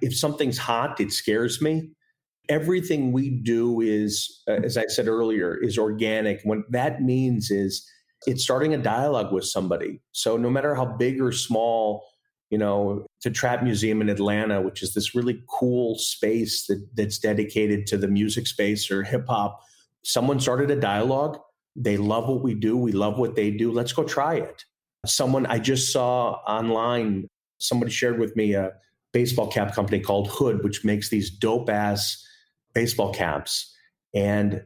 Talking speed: 165 wpm